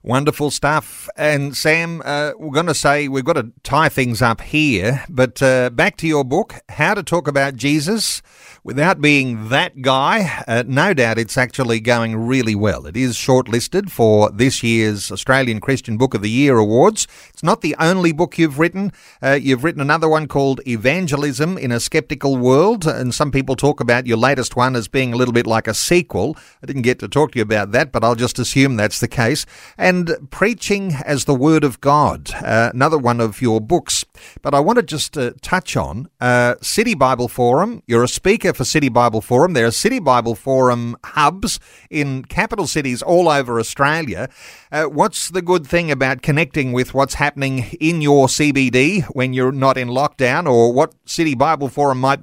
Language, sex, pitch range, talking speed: English, male, 125-155 Hz, 195 wpm